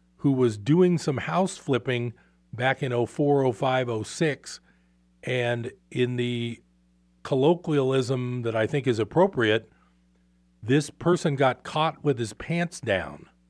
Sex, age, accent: male, 50-69, American